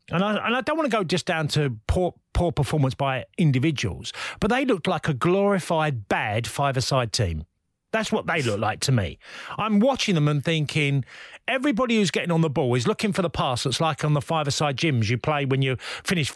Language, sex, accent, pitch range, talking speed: English, male, British, 145-210 Hz, 215 wpm